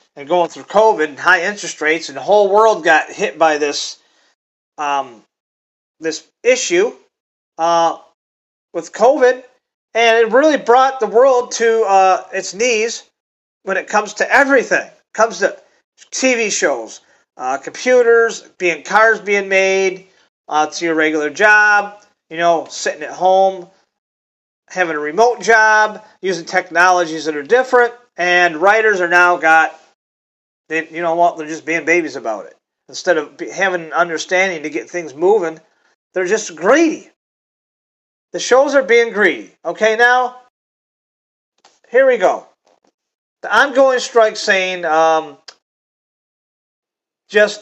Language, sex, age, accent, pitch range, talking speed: English, male, 40-59, American, 170-230 Hz, 135 wpm